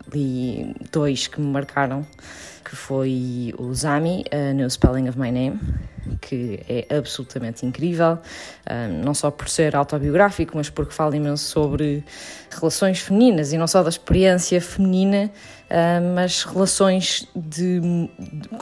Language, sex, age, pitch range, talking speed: Portuguese, female, 20-39, 145-180 Hz, 130 wpm